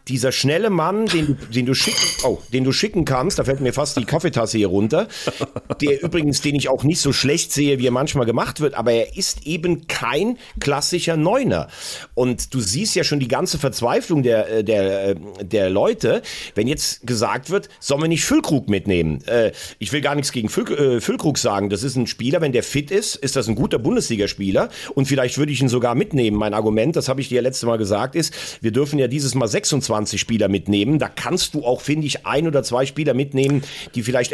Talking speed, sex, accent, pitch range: 205 wpm, male, German, 120-155 Hz